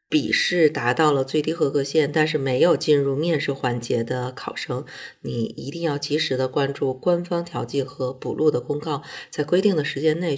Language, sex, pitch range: Chinese, female, 135-165 Hz